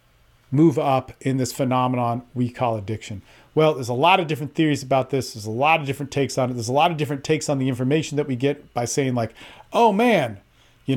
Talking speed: 235 wpm